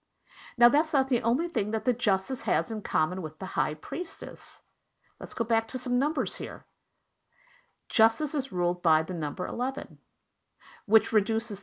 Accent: American